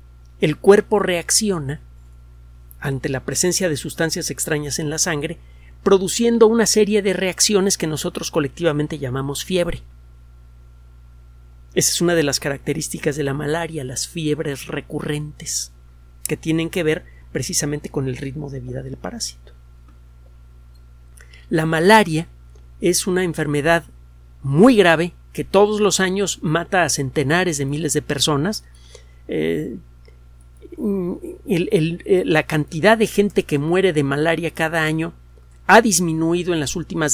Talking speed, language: 130 wpm, Spanish